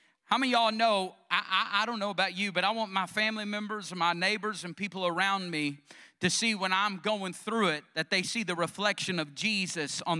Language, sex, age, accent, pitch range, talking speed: English, male, 40-59, American, 175-210 Hz, 235 wpm